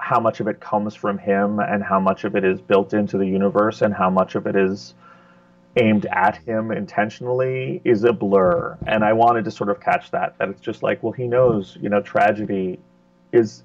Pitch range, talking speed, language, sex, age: 95-115 Hz, 215 wpm, English, male, 30-49